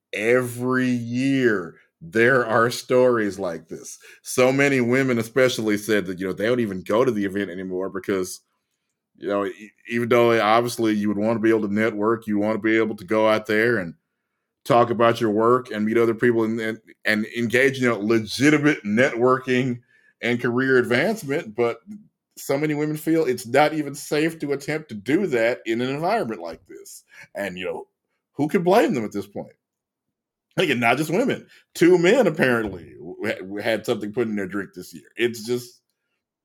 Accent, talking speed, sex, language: American, 185 wpm, male, English